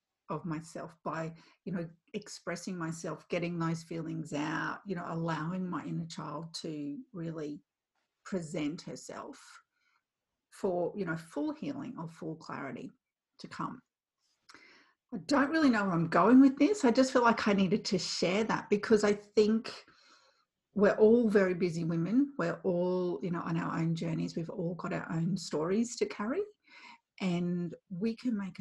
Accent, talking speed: Australian, 160 wpm